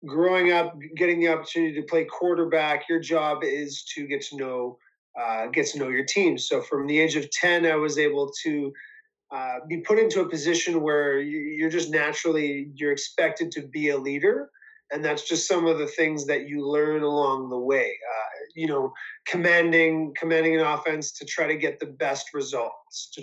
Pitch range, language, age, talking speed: 145-175 Hz, English, 30-49, 195 wpm